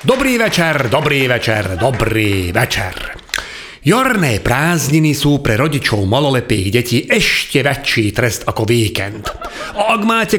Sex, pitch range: male, 120-165 Hz